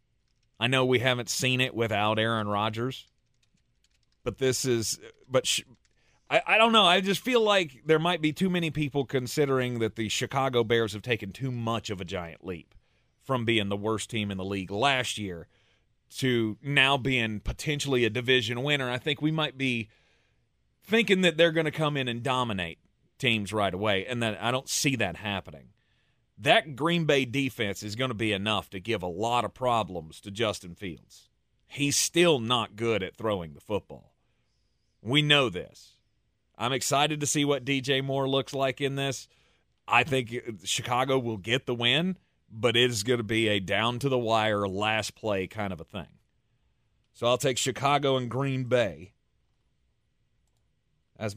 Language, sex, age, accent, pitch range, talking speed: English, male, 30-49, American, 105-135 Hz, 175 wpm